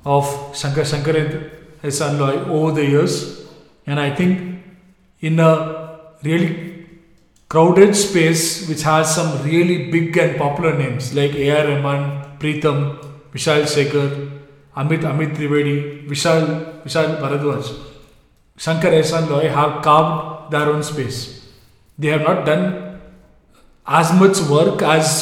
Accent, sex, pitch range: Indian, male, 145-170 Hz